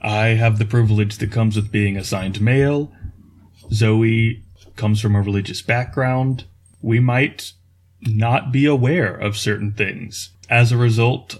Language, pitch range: English, 105-125 Hz